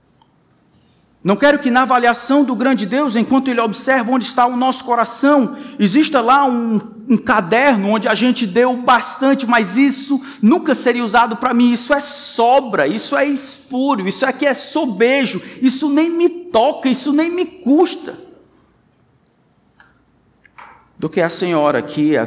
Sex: male